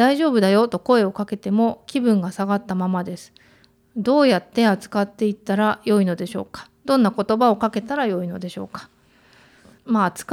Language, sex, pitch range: Japanese, female, 190-255 Hz